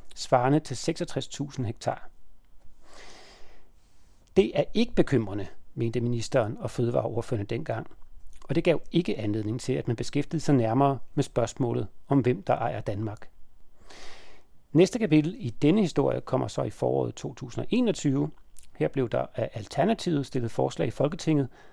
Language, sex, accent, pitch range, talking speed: Danish, male, native, 120-160 Hz, 140 wpm